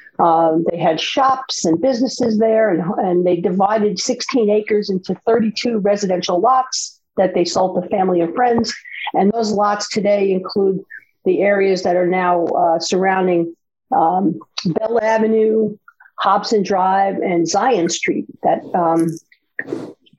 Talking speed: 135 wpm